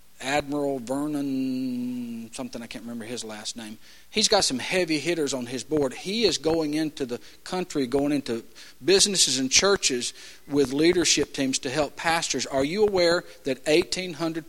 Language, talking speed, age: English, 160 wpm, 50-69